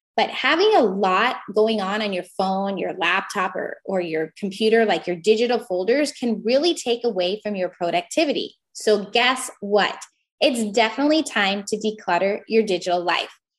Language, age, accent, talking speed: English, 10-29, American, 165 wpm